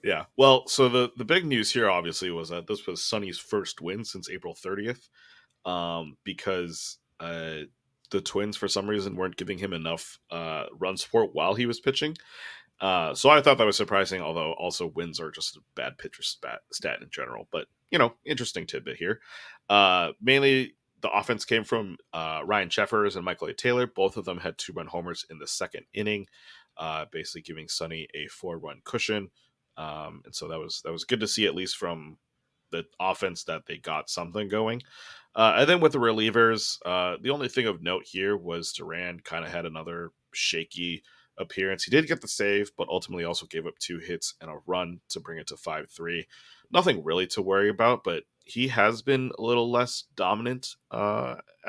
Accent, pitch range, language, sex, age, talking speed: American, 85-115 Hz, English, male, 30-49, 195 wpm